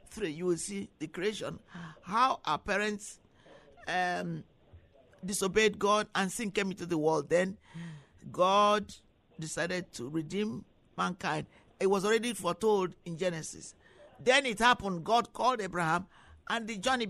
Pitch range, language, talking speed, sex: 170-210 Hz, English, 135 wpm, male